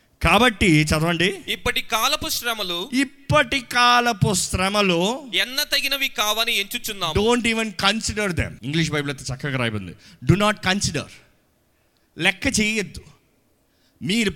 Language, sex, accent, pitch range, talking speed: Telugu, male, native, 160-235 Hz, 110 wpm